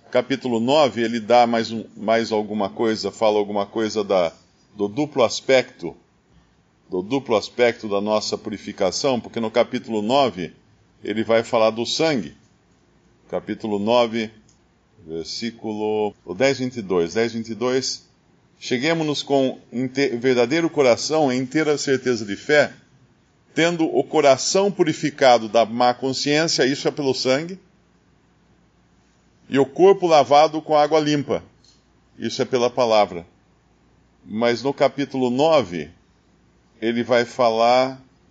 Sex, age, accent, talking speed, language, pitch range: male, 50-69, Brazilian, 115 wpm, Portuguese, 110-145 Hz